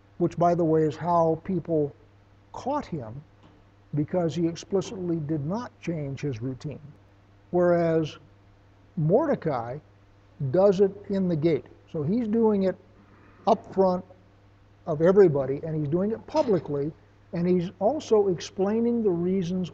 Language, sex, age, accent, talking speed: English, male, 60-79, American, 130 wpm